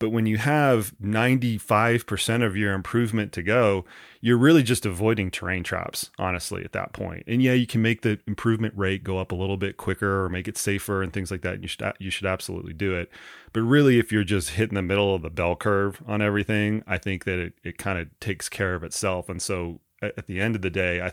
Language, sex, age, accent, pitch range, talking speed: English, male, 30-49, American, 90-110 Hz, 240 wpm